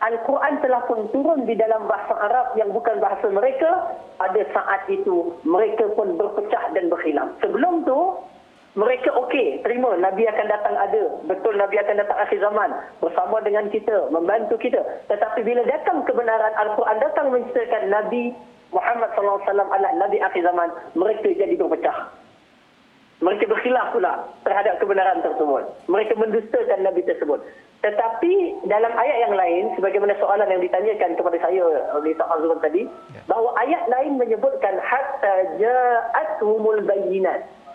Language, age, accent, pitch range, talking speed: Malayalam, 40-59, Indonesian, 210-350 Hz, 145 wpm